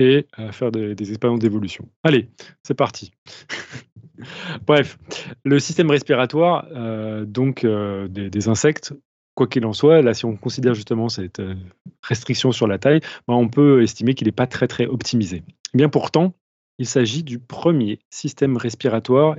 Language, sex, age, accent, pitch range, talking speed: French, male, 30-49, French, 115-145 Hz, 160 wpm